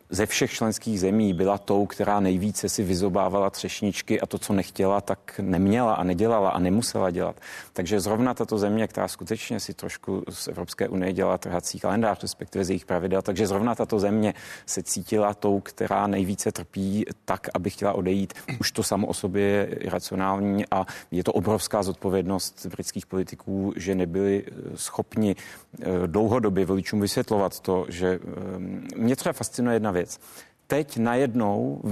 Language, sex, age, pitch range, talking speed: Czech, male, 30-49, 95-115 Hz, 160 wpm